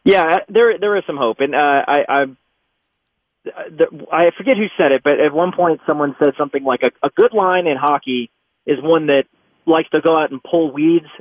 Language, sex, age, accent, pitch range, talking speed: English, male, 30-49, American, 145-180 Hz, 215 wpm